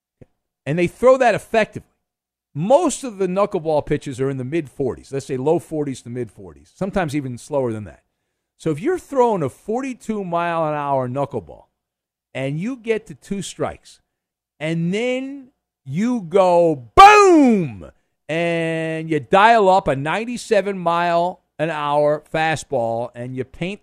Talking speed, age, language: 135 wpm, 50-69, English